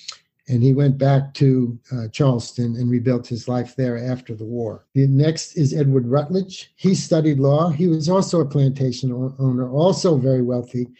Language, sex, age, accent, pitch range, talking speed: English, male, 50-69, American, 125-150 Hz, 180 wpm